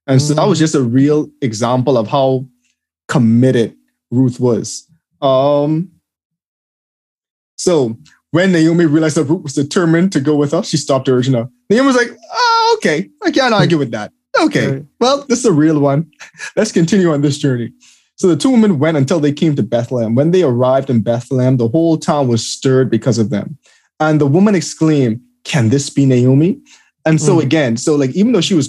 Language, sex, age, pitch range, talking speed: English, male, 20-39, 125-165 Hz, 195 wpm